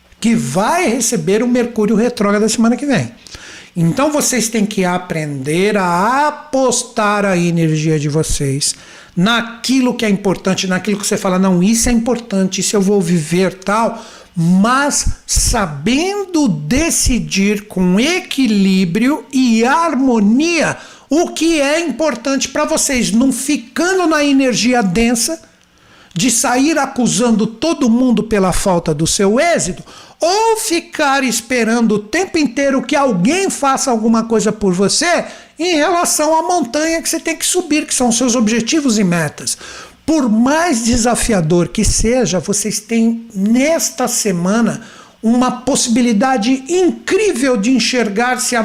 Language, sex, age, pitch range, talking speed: Portuguese, male, 60-79, 205-275 Hz, 135 wpm